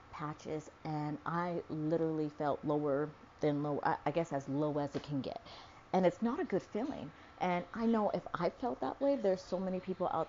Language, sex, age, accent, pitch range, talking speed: English, female, 30-49, American, 160-230 Hz, 205 wpm